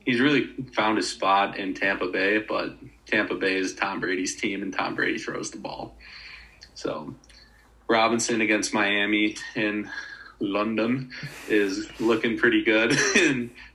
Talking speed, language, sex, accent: 140 wpm, English, male, American